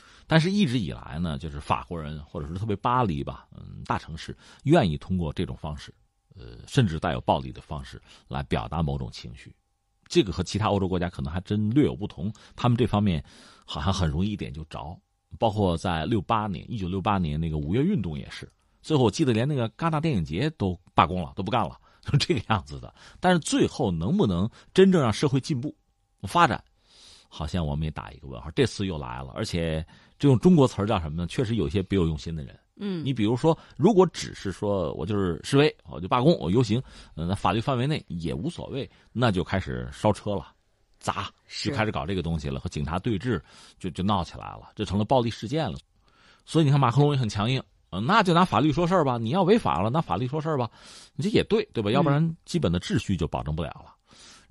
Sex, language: male, Chinese